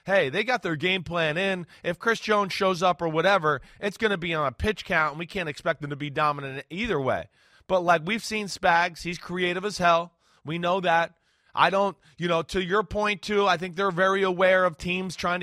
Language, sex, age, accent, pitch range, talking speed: English, male, 20-39, American, 150-195 Hz, 235 wpm